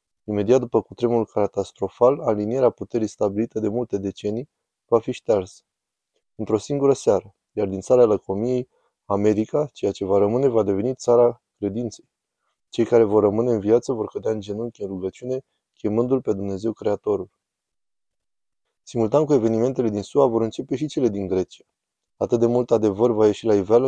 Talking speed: 160 wpm